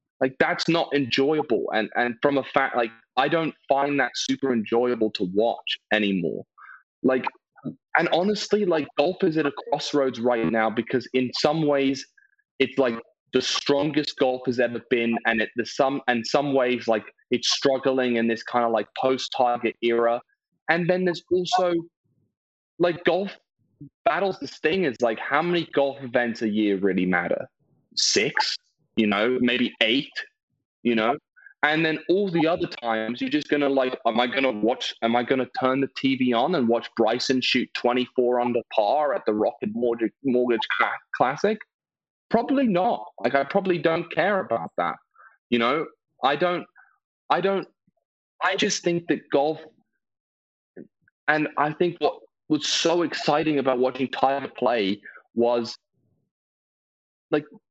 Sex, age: male, 20-39